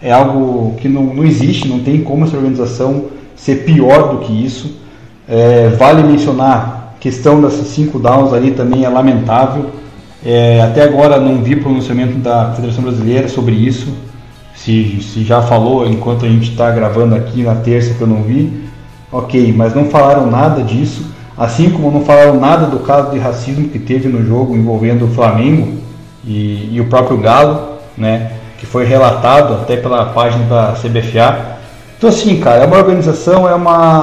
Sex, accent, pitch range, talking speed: male, Brazilian, 120-150 Hz, 175 wpm